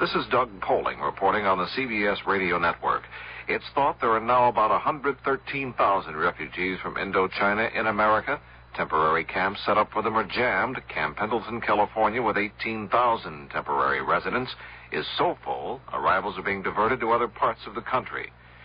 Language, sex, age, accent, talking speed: English, male, 60-79, American, 160 wpm